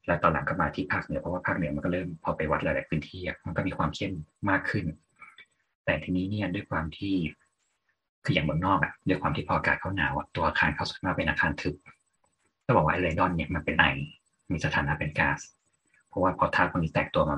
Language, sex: Thai, male